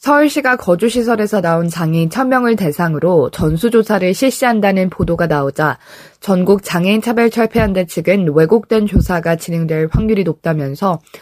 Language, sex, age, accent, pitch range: Korean, female, 20-39, native, 170-230 Hz